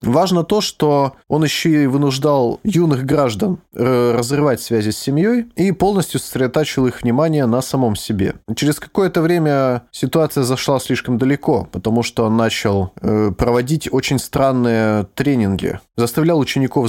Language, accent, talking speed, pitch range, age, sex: Russian, native, 135 wpm, 110-155 Hz, 20-39, male